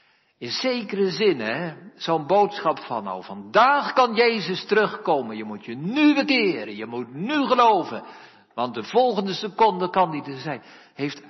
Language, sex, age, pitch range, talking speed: Dutch, male, 60-79, 130-210 Hz, 160 wpm